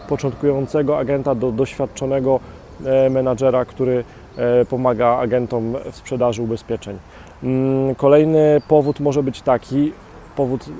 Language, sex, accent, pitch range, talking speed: Polish, male, native, 120-140 Hz, 95 wpm